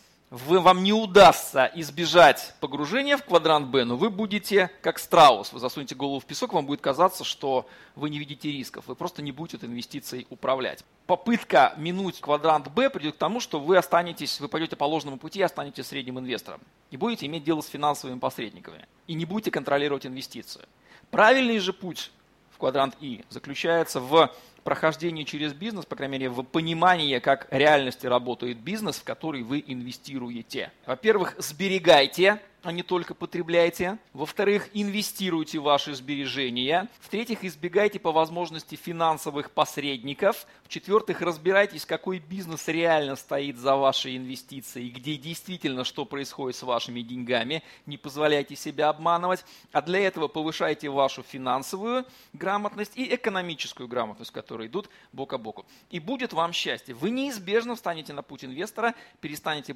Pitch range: 135-185 Hz